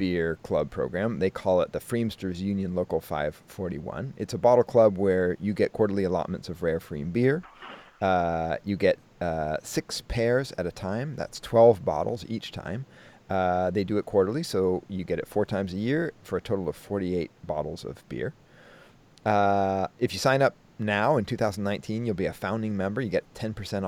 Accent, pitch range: American, 90-120 Hz